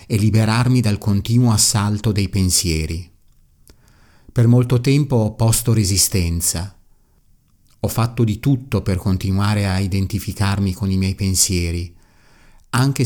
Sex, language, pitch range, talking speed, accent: male, Italian, 95-115 Hz, 120 wpm, native